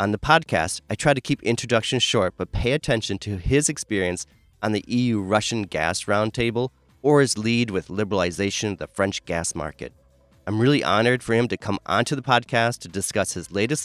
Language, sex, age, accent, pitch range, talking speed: English, male, 30-49, American, 95-125 Hz, 190 wpm